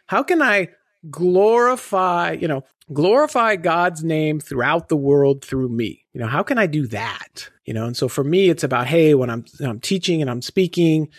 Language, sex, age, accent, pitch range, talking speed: English, male, 50-69, American, 135-180 Hz, 200 wpm